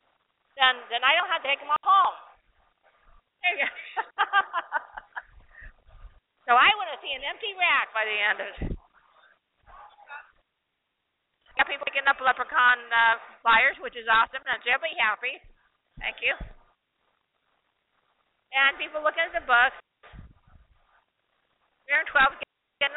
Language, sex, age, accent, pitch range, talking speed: English, female, 50-69, American, 240-290 Hz, 130 wpm